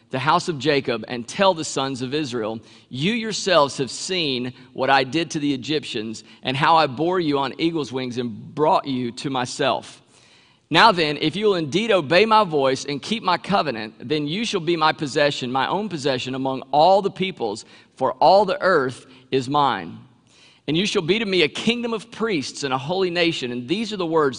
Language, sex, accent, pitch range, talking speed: English, male, American, 130-175 Hz, 205 wpm